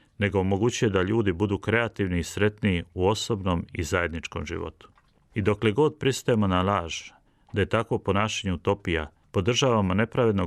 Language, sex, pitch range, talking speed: Croatian, male, 85-105 Hz, 150 wpm